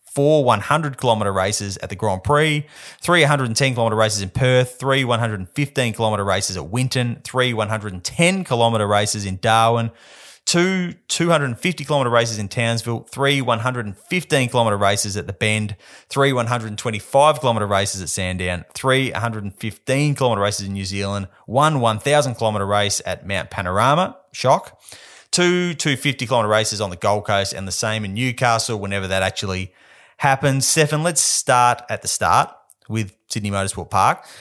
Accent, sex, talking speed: Australian, male, 135 wpm